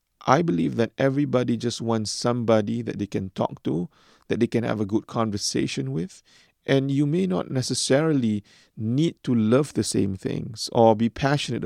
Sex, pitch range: male, 110-125 Hz